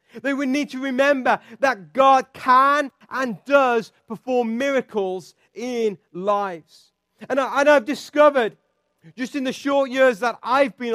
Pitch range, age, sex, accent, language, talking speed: 185-250 Hz, 40-59, male, British, English, 145 wpm